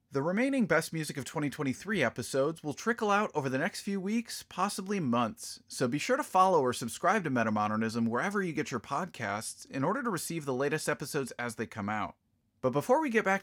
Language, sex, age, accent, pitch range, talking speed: English, male, 30-49, American, 120-185 Hz, 210 wpm